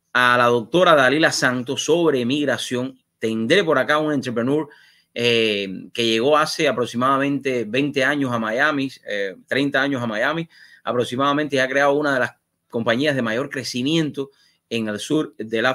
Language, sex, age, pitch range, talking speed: English, male, 30-49, 120-155 Hz, 160 wpm